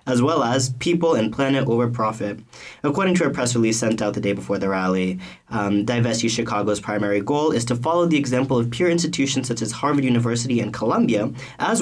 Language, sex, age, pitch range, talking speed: English, male, 20-39, 110-135 Hz, 205 wpm